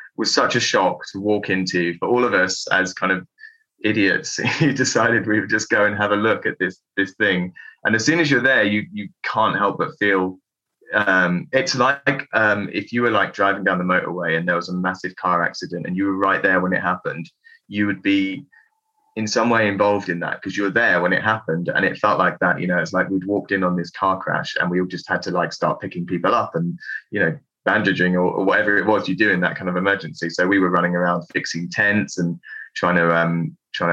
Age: 20-39